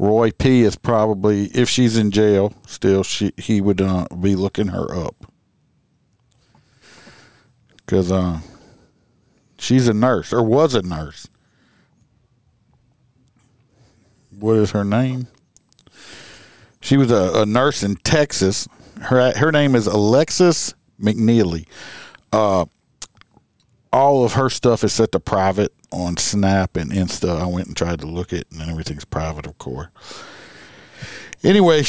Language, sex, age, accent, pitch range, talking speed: English, male, 50-69, American, 100-130 Hz, 130 wpm